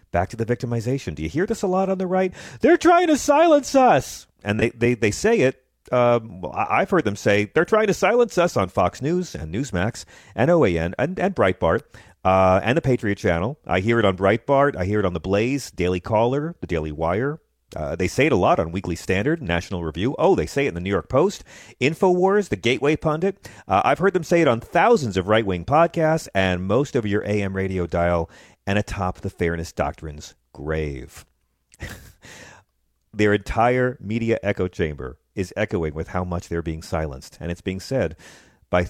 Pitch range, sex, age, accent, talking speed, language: 85-125 Hz, male, 40-59, American, 200 wpm, English